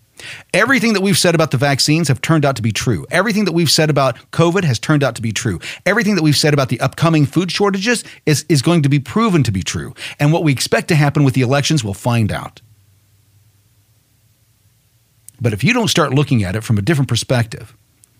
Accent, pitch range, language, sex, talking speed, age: American, 115-165 Hz, English, male, 220 wpm, 40-59